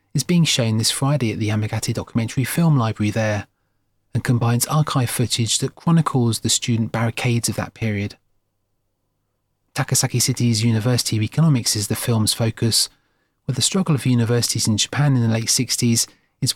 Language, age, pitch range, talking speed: English, 30-49, 110-130 Hz, 165 wpm